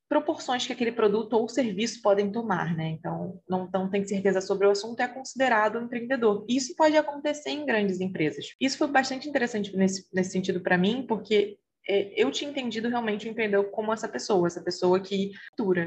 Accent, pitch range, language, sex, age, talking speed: Brazilian, 190-245 Hz, Portuguese, female, 20-39, 195 wpm